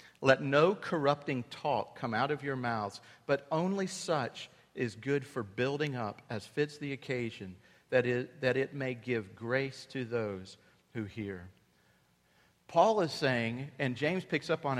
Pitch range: 130-175 Hz